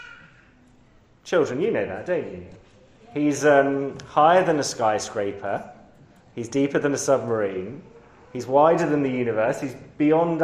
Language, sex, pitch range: English, male, 110-150 Hz